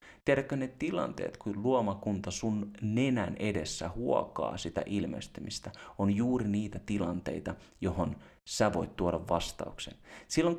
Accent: native